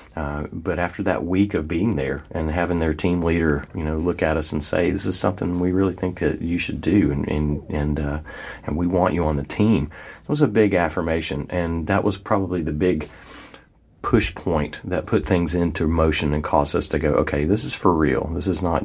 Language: English